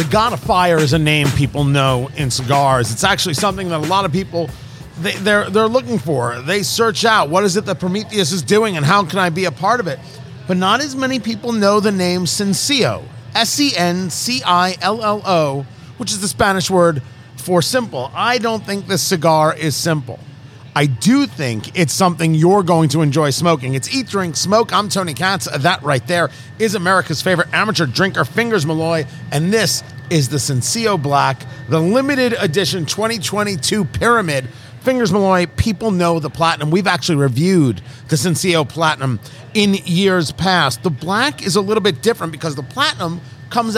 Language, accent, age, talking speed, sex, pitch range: English, American, 40-59, 180 wpm, male, 140-195 Hz